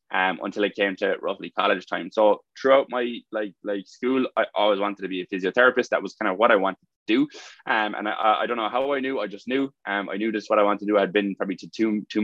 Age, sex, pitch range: 20-39, male, 95-110 Hz